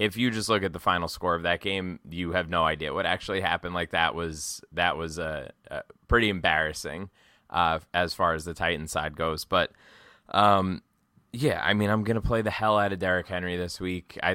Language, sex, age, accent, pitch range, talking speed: English, male, 20-39, American, 85-100 Hz, 220 wpm